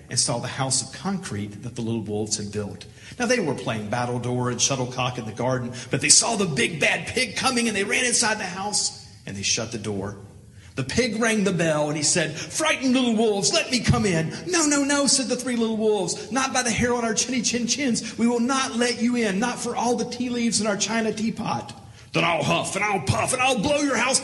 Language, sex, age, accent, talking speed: English, male, 40-59, American, 250 wpm